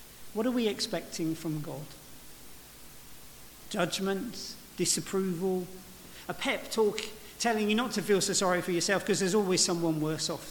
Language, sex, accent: English, male, British